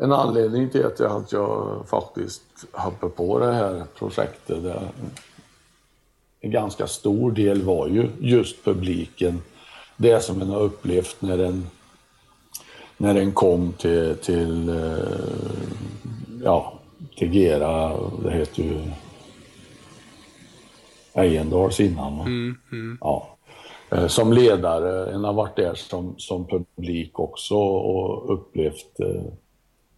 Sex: male